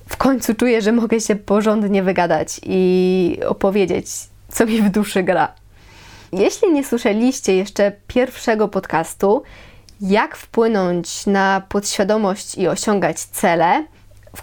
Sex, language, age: female, Polish, 20-39